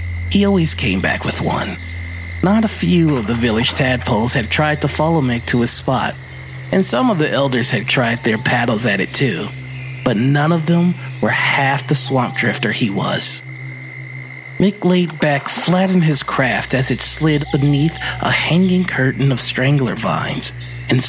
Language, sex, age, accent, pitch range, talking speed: English, male, 30-49, American, 120-155 Hz, 175 wpm